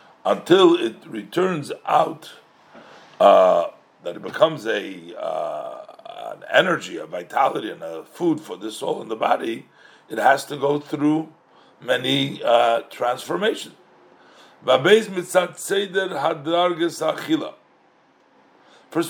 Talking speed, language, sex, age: 105 wpm, English, male, 60-79